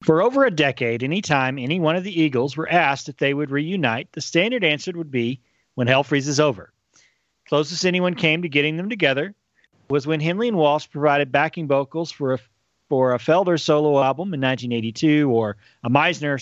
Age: 40-59